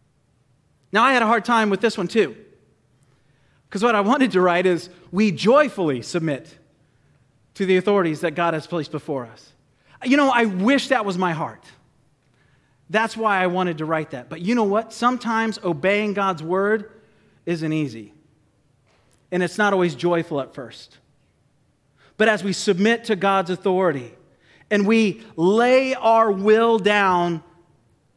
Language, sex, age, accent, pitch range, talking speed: English, male, 40-59, American, 145-205 Hz, 160 wpm